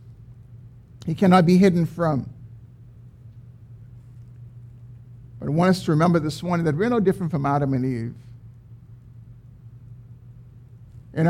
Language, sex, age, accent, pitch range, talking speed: English, male, 50-69, American, 120-170 Hz, 115 wpm